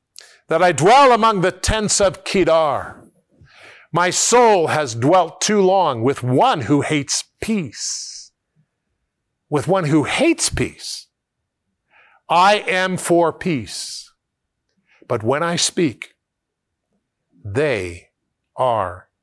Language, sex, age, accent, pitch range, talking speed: English, male, 50-69, American, 130-185 Hz, 105 wpm